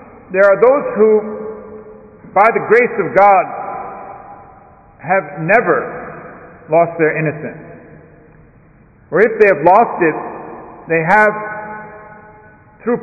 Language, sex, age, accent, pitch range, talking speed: English, male, 50-69, American, 190-270 Hz, 105 wpm